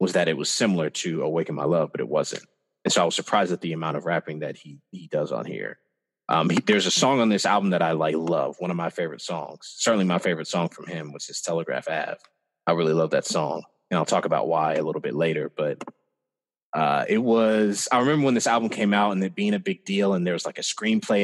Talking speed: 260 wpm